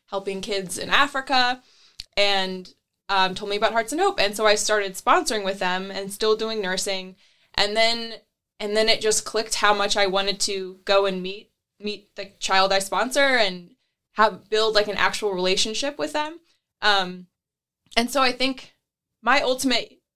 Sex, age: female, 20-39